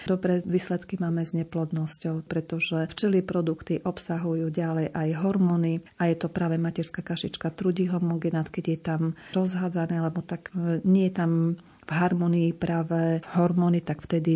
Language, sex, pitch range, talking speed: Slovak, female, 160-180 Hz, 145 wpm